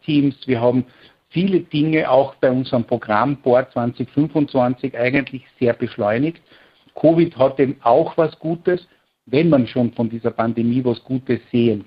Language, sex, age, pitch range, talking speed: German, male, 60-79, 120-145 Hz, 145 wpm